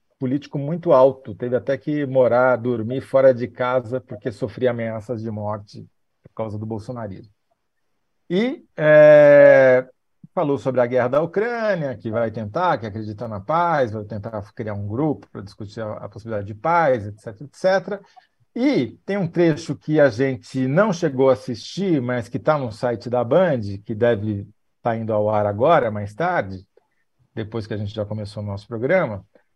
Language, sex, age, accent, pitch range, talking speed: Portuguese, male, 50-69, Brazilian, 110-150 Hz, 170 wpm